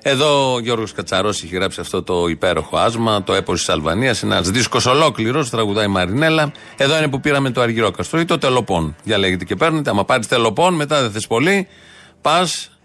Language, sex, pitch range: Greek, male, 110-155 Hz